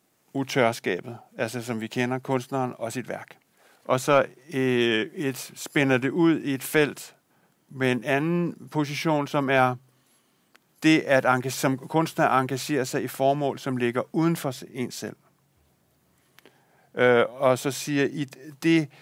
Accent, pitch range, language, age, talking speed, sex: native, 115-140 Hz, Danish, 50-69, 135 wpm, male